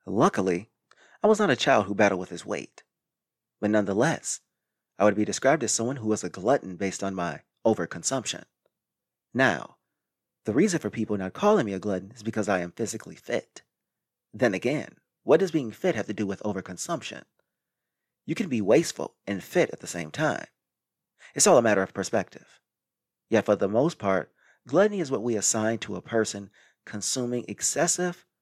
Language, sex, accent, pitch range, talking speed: English, male, American, 100-125 Hz, 180 wpm